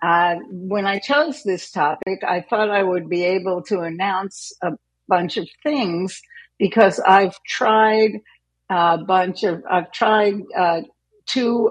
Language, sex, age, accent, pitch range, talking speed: English, female, 60-79, American, 165-205 Hz, 140 wpm